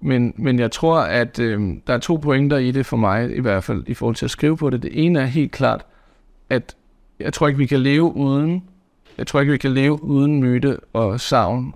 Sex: male